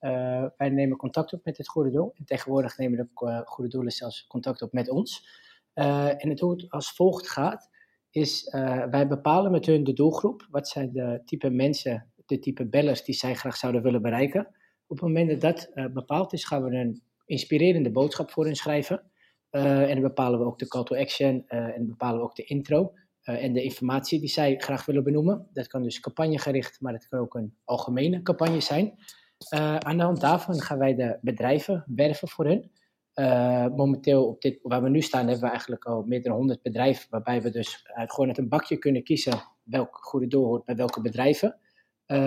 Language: Dutch